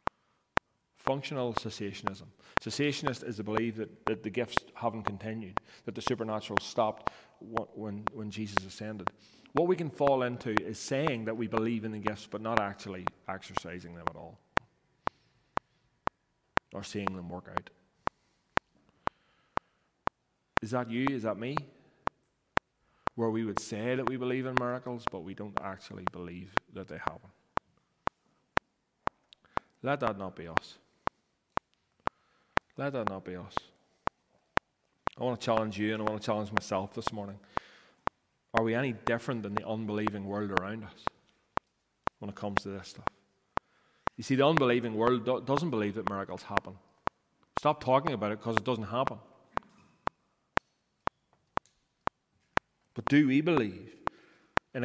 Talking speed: 140 wpm